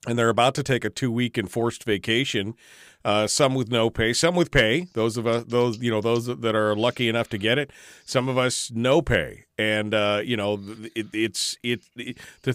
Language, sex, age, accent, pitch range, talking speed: English, male, 40-59, American, 115-145 Hz, 215 wpm